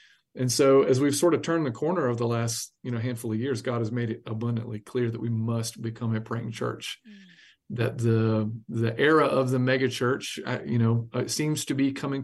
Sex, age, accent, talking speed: male, 40-59, American, 225 wpm